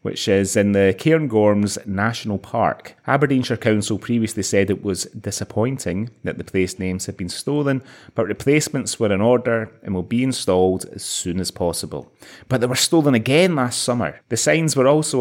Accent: British